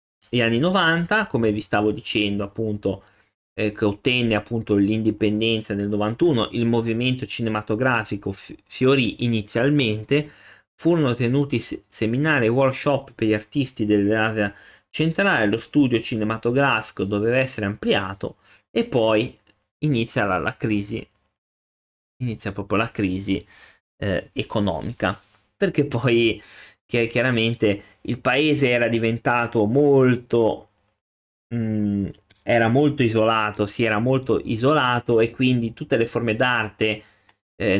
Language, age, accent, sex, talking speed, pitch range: Italian, 20-39, native, male, 115 wpm, 105-130 Hz